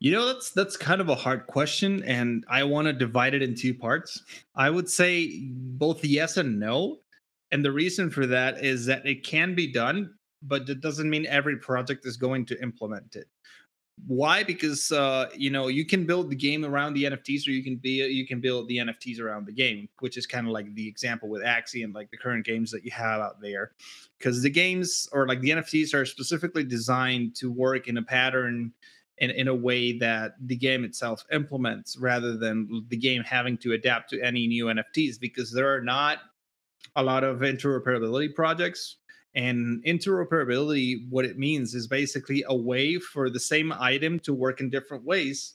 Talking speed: 200 wpm